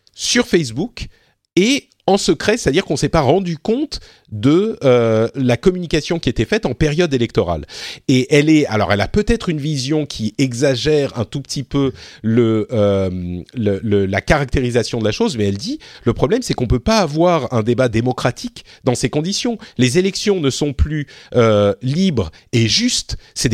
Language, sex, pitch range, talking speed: French, male, 115-170 Hz, 180 wpm